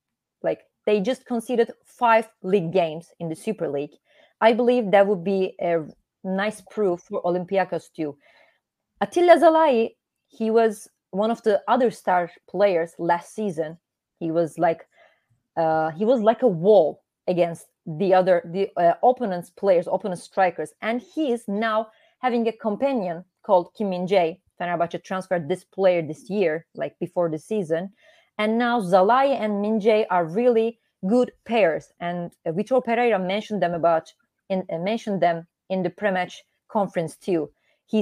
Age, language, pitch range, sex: 30-49, English, 170-220 Hz, female